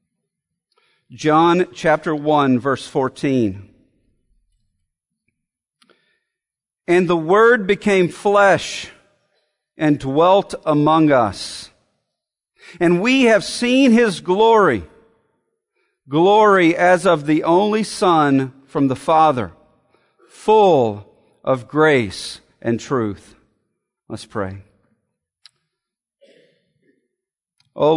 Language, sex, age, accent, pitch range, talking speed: English, male, 50-69, American, 125-185 Hz, 80 wpm